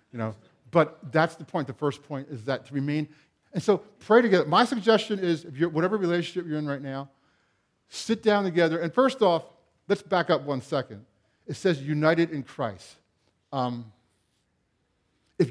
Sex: male